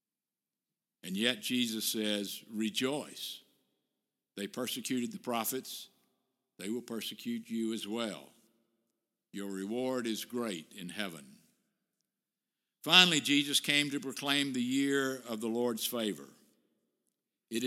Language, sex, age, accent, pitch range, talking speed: English, male, 60-79, American, 110-145 Hz, 110 wpm